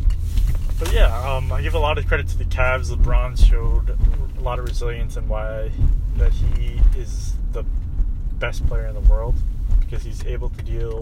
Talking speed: 190 wpm